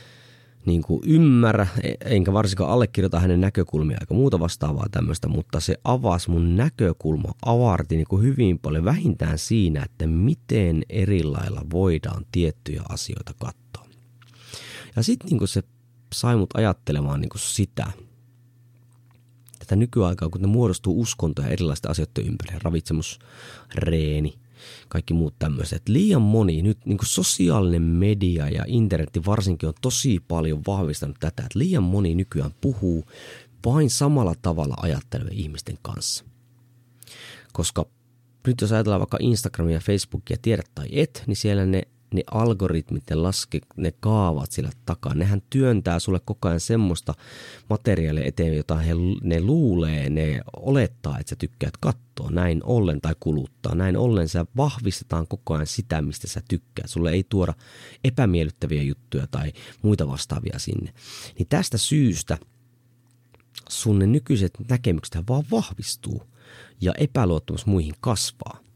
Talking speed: 130 wpm